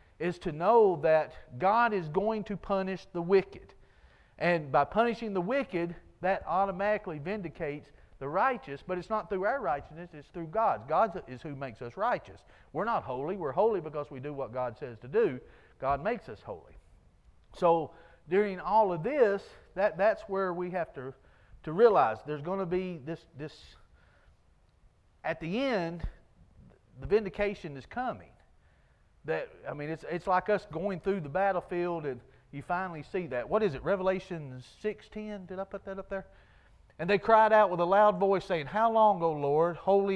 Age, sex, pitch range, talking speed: 50-69, male, 145-200 Hz, 180 wpm